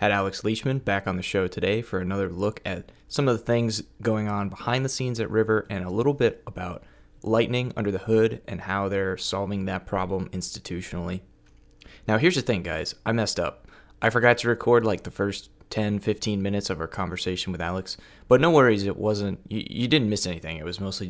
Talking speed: 210 wpm